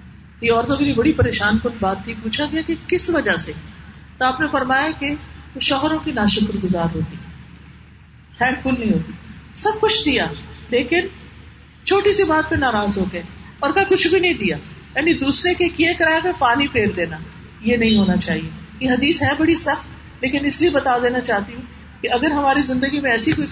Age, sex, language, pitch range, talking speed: 50-69, female, Urdu, 215-290 Hz, 195 wpm